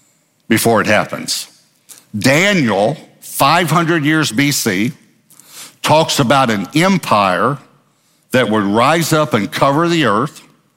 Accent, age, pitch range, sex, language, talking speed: American, 60-79, 120-155 Hz, male, English, 105 wpm